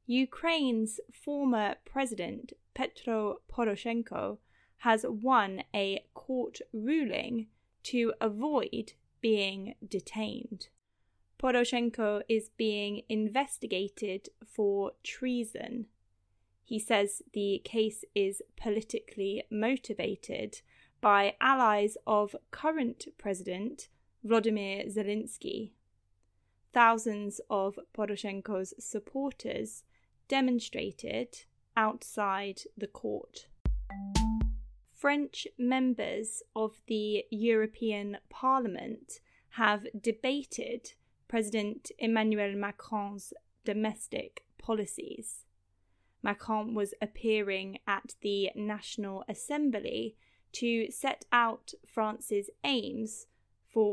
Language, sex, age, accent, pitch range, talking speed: English, female, 10-29, British, 200-235 Hz, 75 wpm